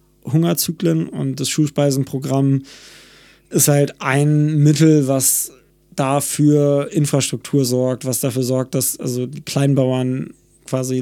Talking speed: 110 wpm